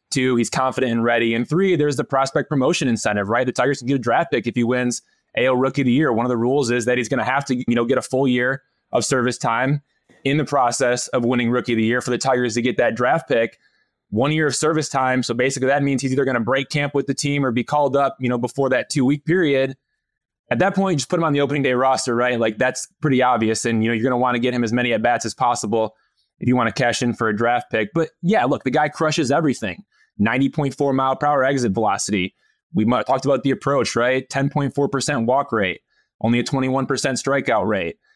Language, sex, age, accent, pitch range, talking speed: English, male, 20-39, American, 120-140 Hz, 265 wpm